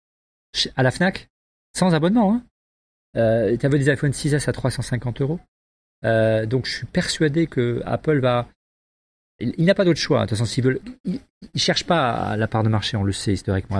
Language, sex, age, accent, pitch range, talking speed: French, male, 40-59, French, 105-135 Hz, 205 wpm